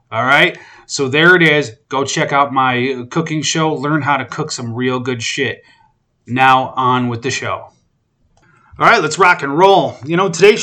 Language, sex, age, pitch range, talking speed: English, male, 30-49, 120-145 Hz, 190 wpm